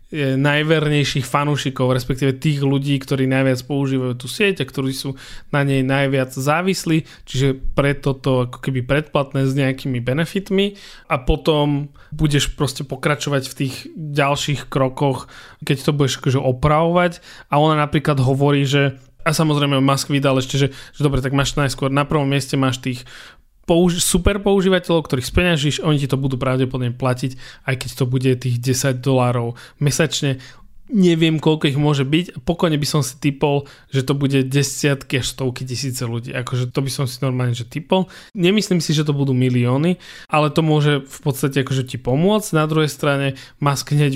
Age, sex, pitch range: 20-39, male, 135-155 Hz